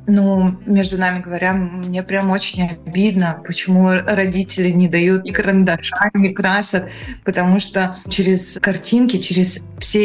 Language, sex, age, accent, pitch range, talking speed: Russian, female, 20-39, native, 185-220 Hz, 130 wpm